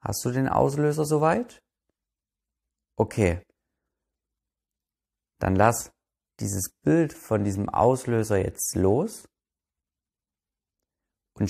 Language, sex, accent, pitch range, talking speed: German, male, German, 90-120 Hz, 85 wpm